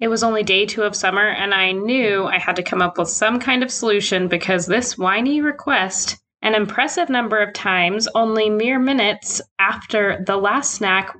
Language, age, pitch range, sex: English, 20-39, 190-240 Hz, female